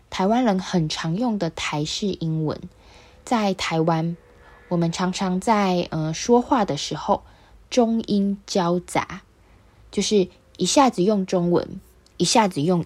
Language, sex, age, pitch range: Chinese, female, 20-39, 160-215 Hz